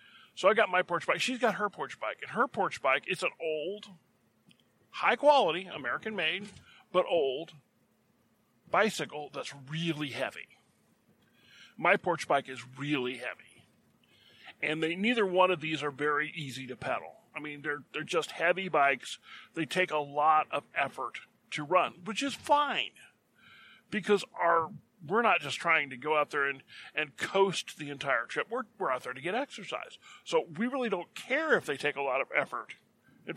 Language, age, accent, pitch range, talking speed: English, 40-59, American, 145-195 Hz, 175 wpm